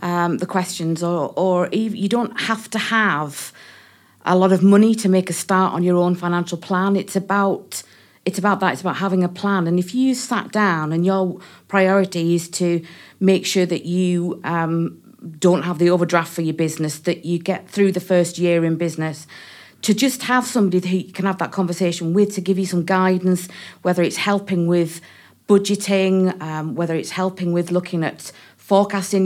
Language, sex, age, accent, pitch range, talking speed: English, female, 40-59, British, 175-195 Hz, 190 wpm